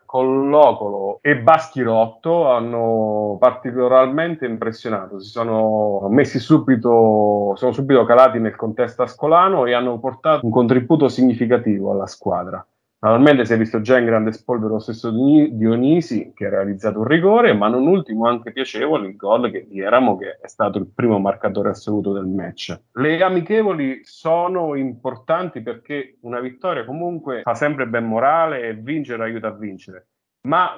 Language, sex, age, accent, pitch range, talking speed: Italian, male, 30-49, native, 115-160 Hz, 150 wpm